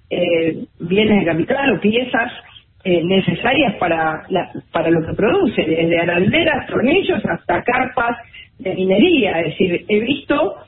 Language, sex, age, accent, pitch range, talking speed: Spanish, female, 40-59, Argentinian, 185-265 Hz, 140 wpm